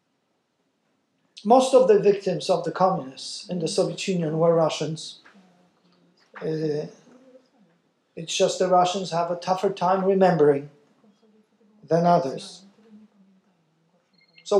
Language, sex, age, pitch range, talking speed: English, male, 50-69, 170-205 Hz, 105 wpm